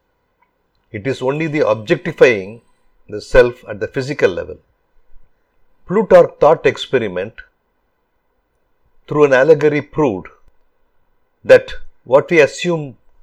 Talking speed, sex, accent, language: 100 wpm, male, Indian, English